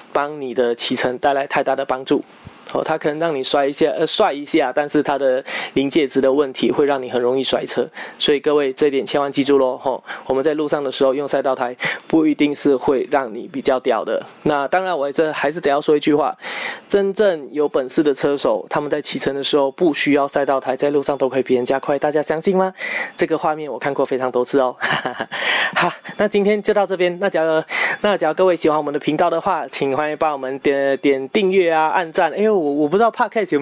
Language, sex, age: Chinese, male, 20-39